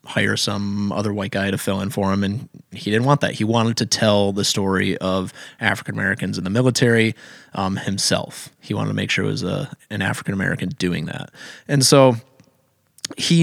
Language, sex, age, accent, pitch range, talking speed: English, male, 20-39, American, 100-125 Hz, 190 wpm